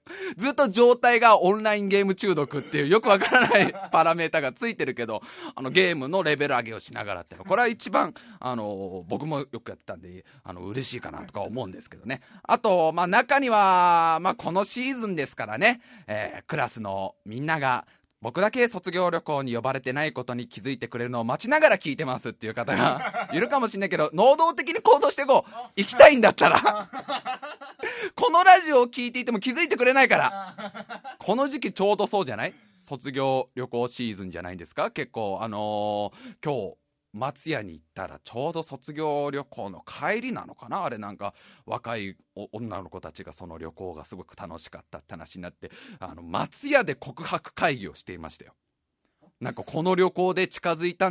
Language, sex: Japanese, male